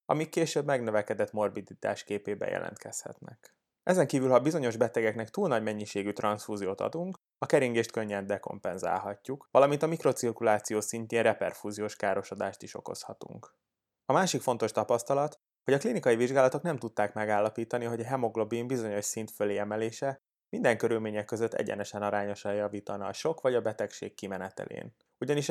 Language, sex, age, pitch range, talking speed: Hungarian, male, 20-39, 105-125 Hz, 140 wpm